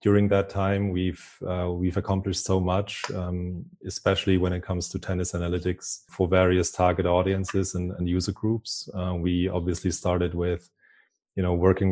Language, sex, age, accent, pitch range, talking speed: English, male, 20-39, German, 90-95 Hz, 165 wpm